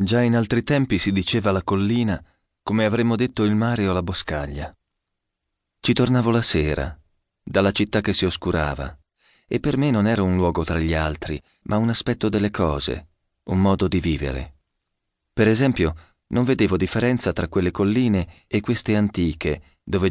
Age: 30-49